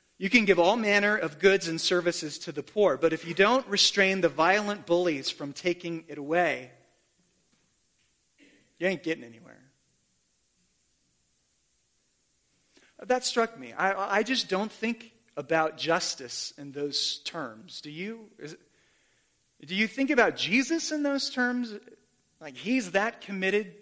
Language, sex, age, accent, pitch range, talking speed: English, male, 30-49, American, 150-195 Hz, 145 wpm